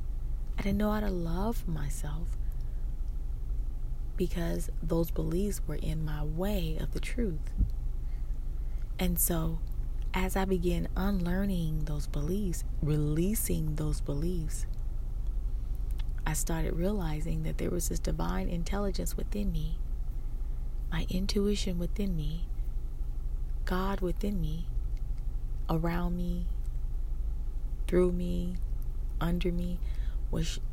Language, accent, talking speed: English, American, 105 wpm